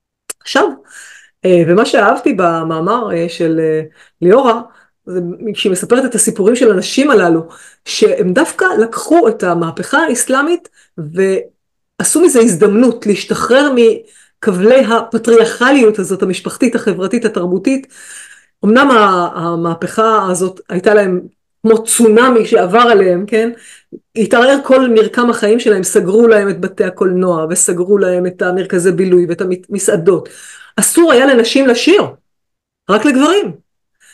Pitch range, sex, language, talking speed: 190-245 Hz, female, Hebrew, 110 wpm